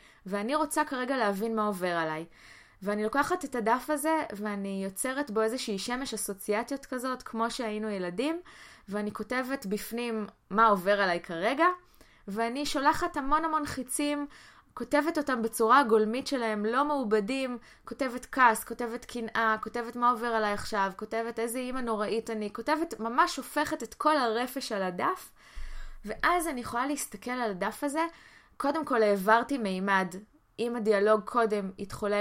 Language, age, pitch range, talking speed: Hebrew, 20-39, 205-265 Hz, 145 wpm